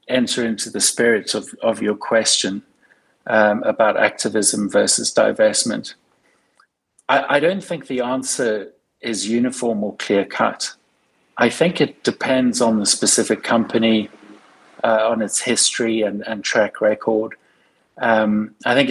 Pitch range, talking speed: 110-125 Hz, 135 wpm